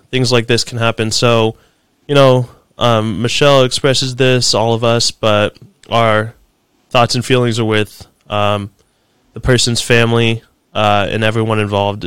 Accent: American